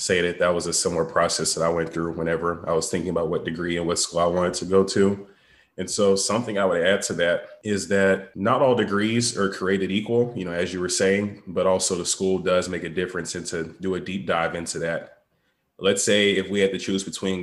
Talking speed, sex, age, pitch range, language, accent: 250 wpm, male, 20-39, 90-100 Hz, English, American